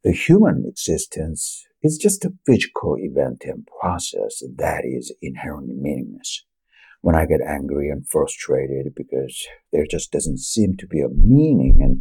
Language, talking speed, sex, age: English, 150 wpm, male, 60-79